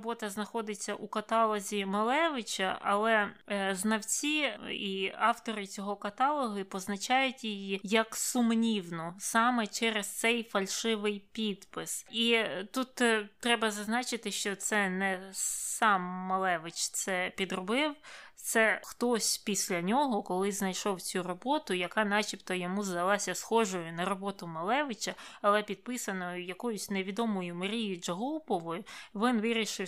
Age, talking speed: 20-39, 110 wpm